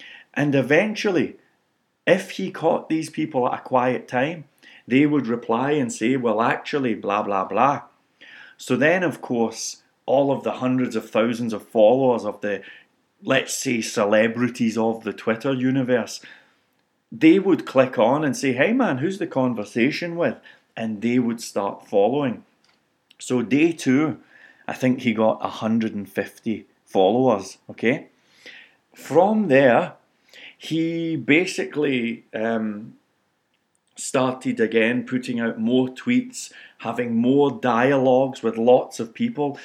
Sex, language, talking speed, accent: male, English, 130 wpm, British